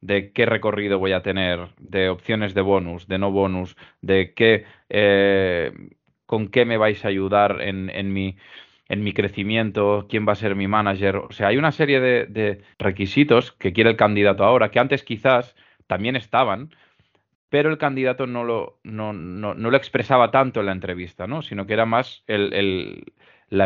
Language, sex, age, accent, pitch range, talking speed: Spanish, male, 20-39, Spanish, 95-115 Hz, 190 wpm